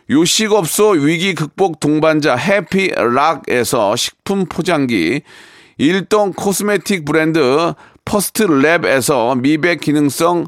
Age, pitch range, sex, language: 40-59, 160-205 Hz, male, Korean